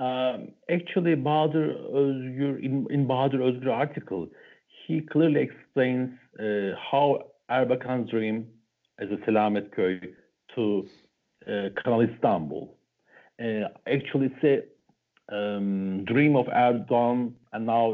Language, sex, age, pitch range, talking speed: English, male, 60-79, 115-145 Hz, 105 wpm